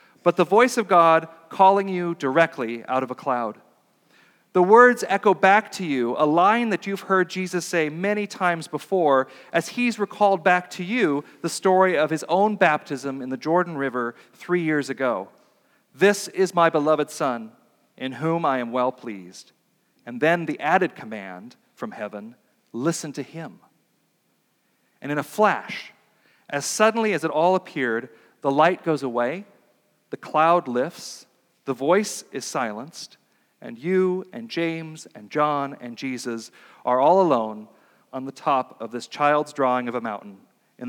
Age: 40-59